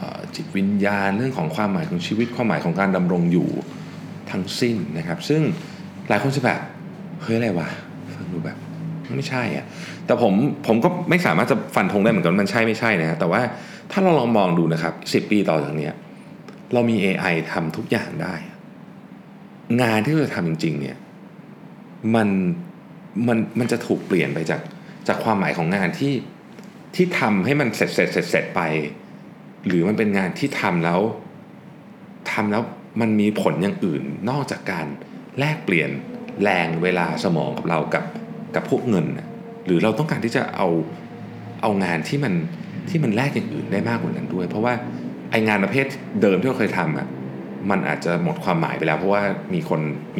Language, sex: Thai, male